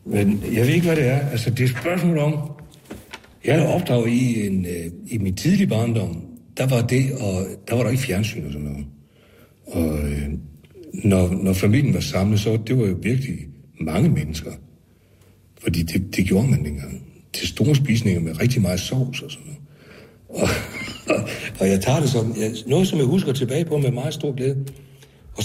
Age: 60-79